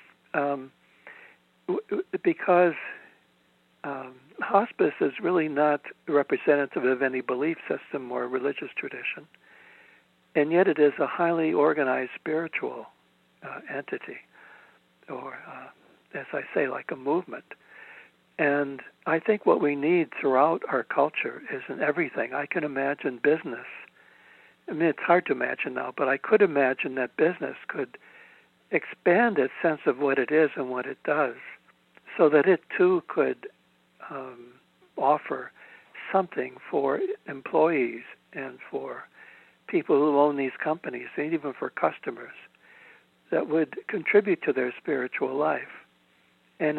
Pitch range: 130-180 Hz